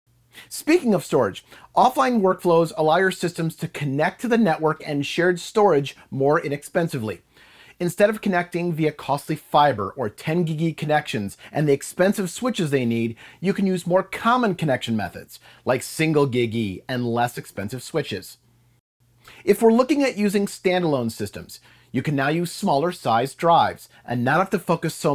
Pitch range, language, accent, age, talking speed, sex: 135-180 Hz, English, American, 40-59, 160 wpm, male